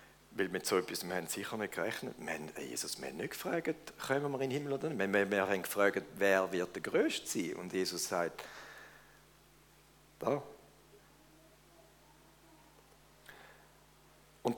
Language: German